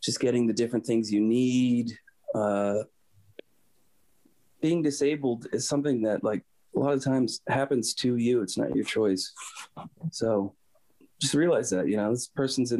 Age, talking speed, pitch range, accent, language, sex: 30-49, 160 wpm, 110-135 Hz, American, English, male